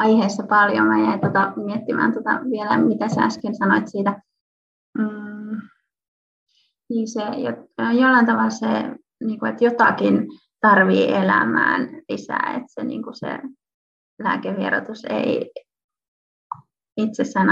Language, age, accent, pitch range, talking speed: Finnish, 20-39, native, 210-255 Hz, 90 wpm